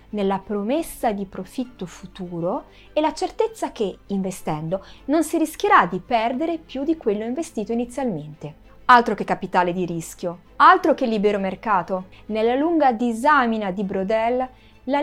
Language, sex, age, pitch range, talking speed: Italian, female, 30-49, 190-305 Hz, 140 wpm